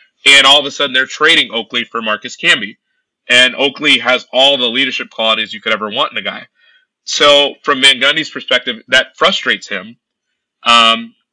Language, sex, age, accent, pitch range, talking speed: English, male, 30-49, American, 120-170 Hz, 175 wpm